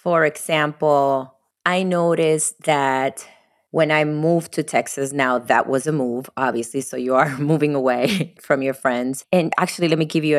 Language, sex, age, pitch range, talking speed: English, female, 30-49, 135-160 Hz, 175 wpm